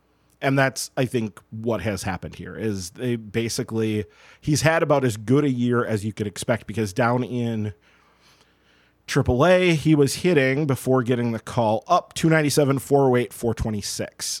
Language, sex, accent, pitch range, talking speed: English, male, American, 110-135 Hz, 155 wpm